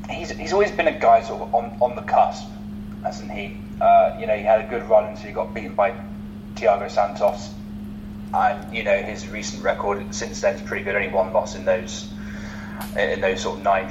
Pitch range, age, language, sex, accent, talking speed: 105-110 Hz, 20-39, English, male, British, 220 wpm